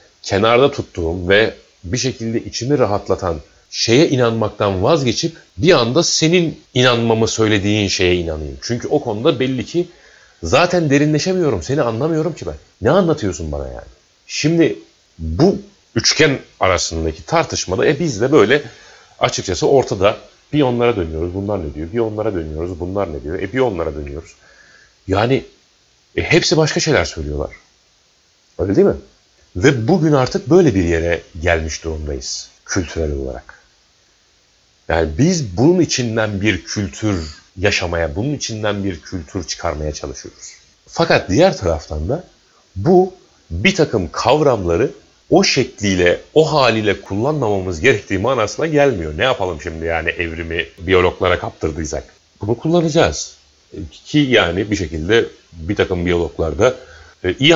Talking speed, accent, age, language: 130 wpm, native, 40-59, Turkish